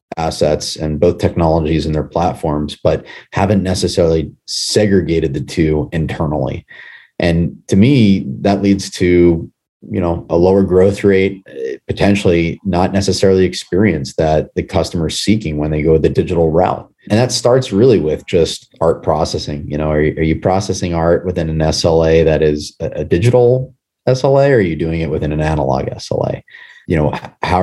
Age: 30-49